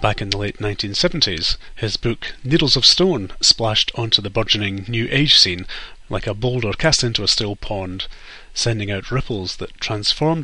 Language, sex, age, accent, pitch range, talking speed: English, male, 30-49, British, 105-125 Hz, 170 wpm